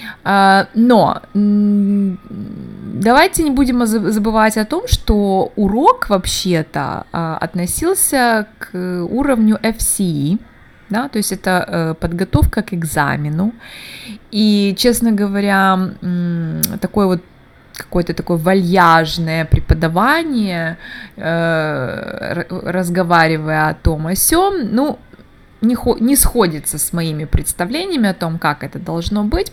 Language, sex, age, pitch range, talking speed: Russian, female, 20-39, 170-220 Hz, 95 wpm